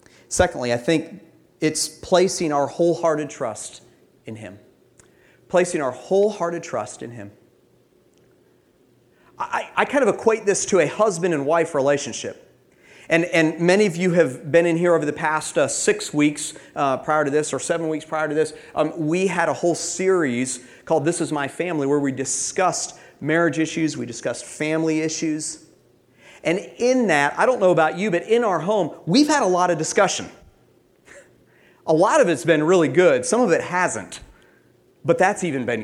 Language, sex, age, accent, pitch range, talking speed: English, male, 40-59, American, 150-180 Hz, 175 wpm